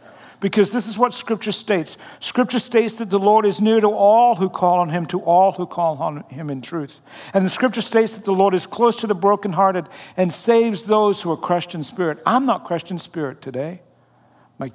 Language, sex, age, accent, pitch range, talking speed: English, male, 60-79, American, 145-210 Hz, 220 wpm